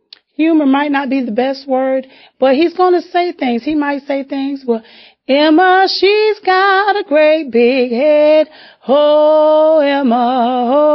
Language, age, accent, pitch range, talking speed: English, 30-49, American, 245-305 Hz, 155 wpm